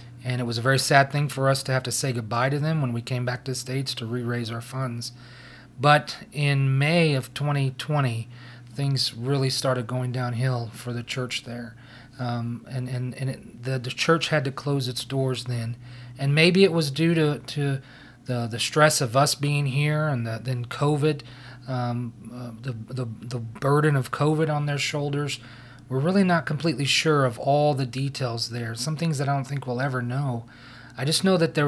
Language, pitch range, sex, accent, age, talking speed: English, 125-140 Hz, male, American, 40-59, 205 wpm